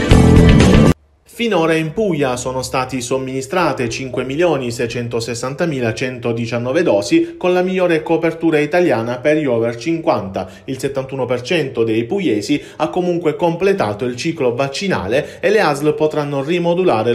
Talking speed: 110 wpm